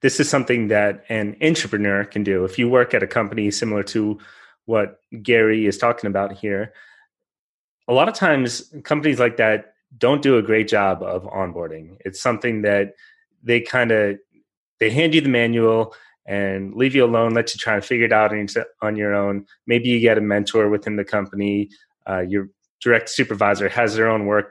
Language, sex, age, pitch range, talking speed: English, male, 30-49, 100-125 Hz, 190 wpm